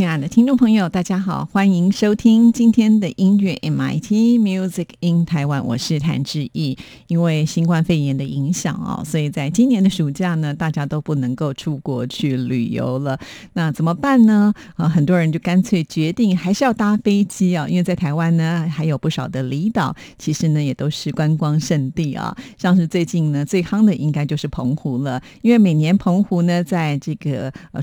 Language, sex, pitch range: Chinese, female, 150-190 Hz